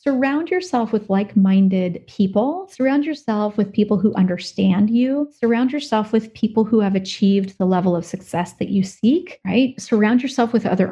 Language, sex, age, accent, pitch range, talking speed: English, female, 30-49, American, 190-235 Hz, 170 wpm